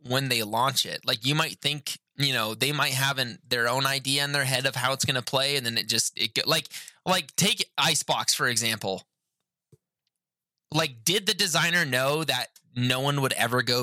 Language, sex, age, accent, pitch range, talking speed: English, male, 20-39, American, 115-150 Hz, 205 wpm